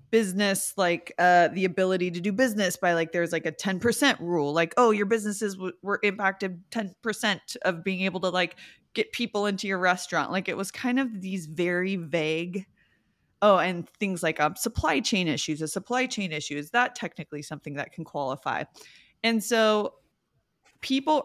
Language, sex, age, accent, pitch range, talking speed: English, female, 20-39, American, 170-220 Hz, 175 wpm